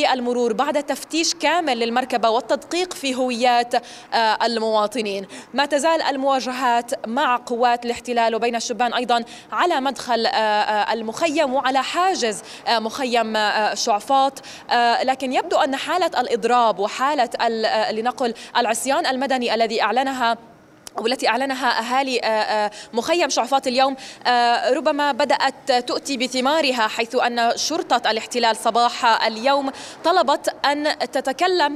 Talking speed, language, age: 105 wpm, Arabic, 20-39